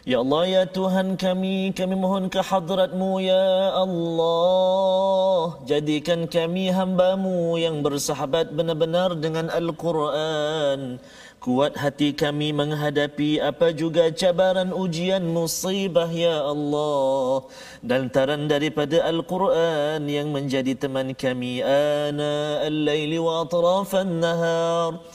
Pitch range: 145-190 Hz